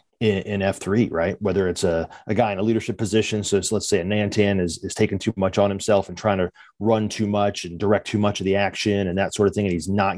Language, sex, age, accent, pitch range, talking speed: English, male, 30-49, American, 100-120 Hz, 265 wpm